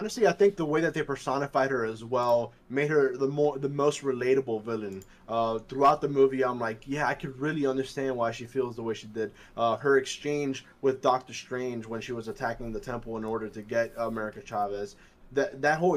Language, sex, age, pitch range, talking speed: English, male, 20-39, 130-175 Hz, 220 wpm